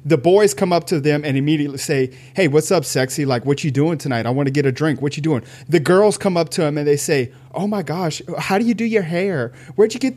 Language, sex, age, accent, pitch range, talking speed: English, male, 30-49, American, 140-210 Hz, 285 wpm